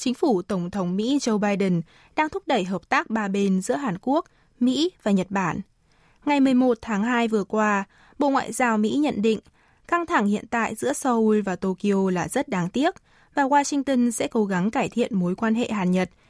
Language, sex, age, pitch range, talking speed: Vietnamese, female, 20-39, 195-265 Hz, 205 wpm